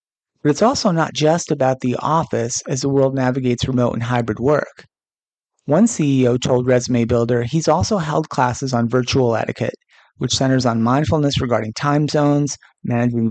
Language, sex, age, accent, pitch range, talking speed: English, male, 30-49, American, 125-150 Hz, 160 wpm